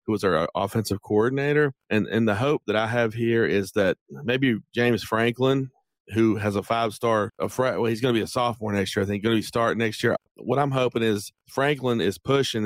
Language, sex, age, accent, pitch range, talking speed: English, male, 30-49, American, 105-125 Hz, 230 wpm